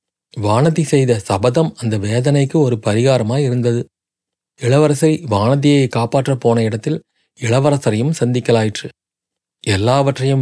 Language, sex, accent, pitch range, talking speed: Tamil, male, native, 120-150 Hz, 90 wpm